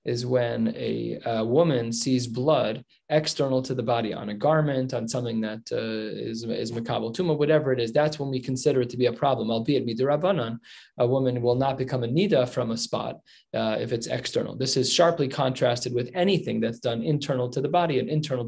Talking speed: 205 wpm